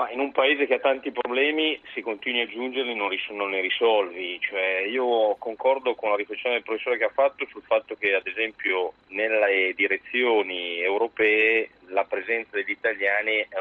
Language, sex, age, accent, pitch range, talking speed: Italian, male, 40-59, native, 100-155 Hz, 175 wpm